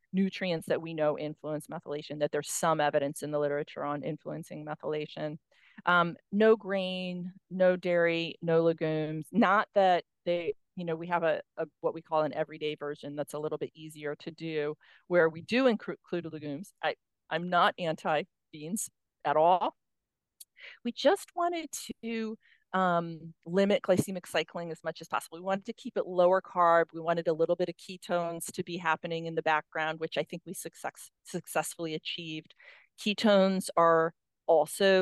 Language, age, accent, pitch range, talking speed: English, 40-59, American, 155-180 Hz, 165 wpm